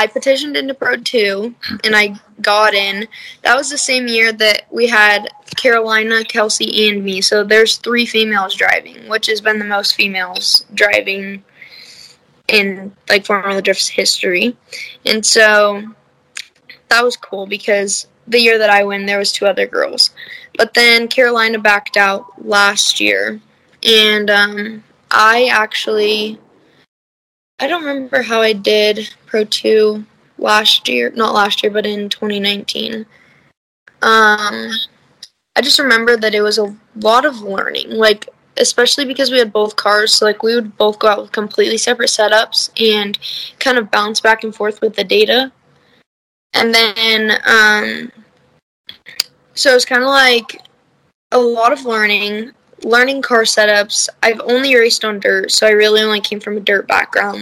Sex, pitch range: female, 210-235 Hz